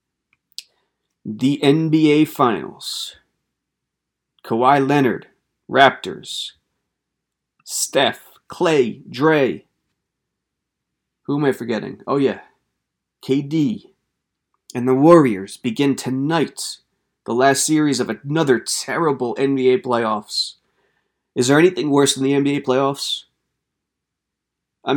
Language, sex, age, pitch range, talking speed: English, male, 30-49, 115-145 Hz, 90 wpm